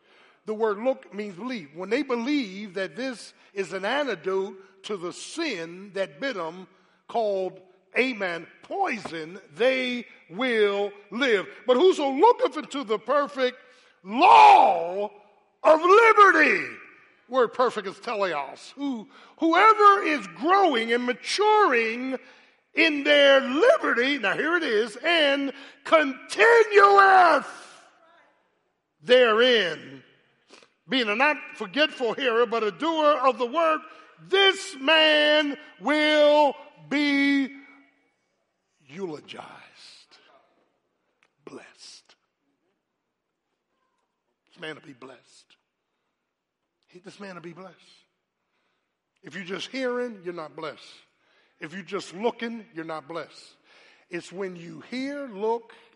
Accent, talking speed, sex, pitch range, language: American, 110 wpm, male, 190-300 Hz, English